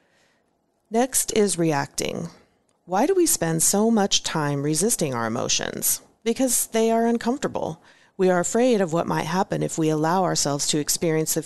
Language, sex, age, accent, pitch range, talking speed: English, female, 40-59, American, 150-205 Hz, 160 wpm